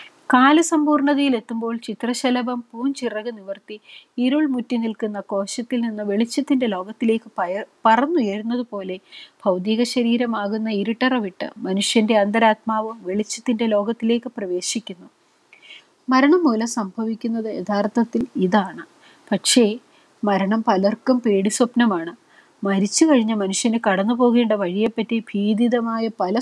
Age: 30-49